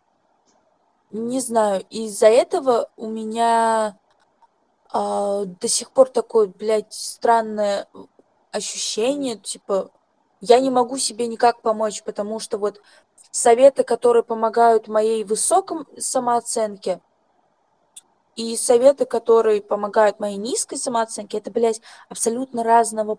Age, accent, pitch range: 20-39, native, 215-260 Hz